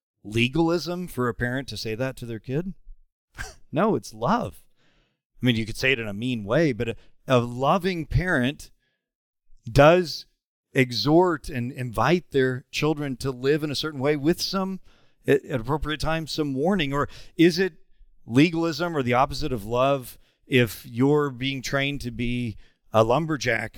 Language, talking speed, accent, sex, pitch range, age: English, 165 wpm, American, male, 120-155 Hz, 40-59